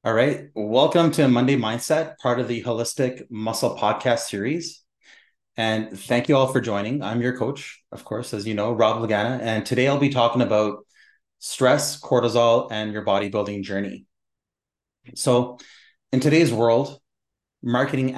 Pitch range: 105-125 Hz